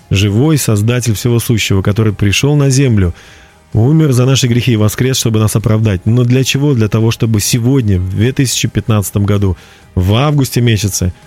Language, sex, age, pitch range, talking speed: Russian, male, 30-49, 105-135 Hz, 160 wpm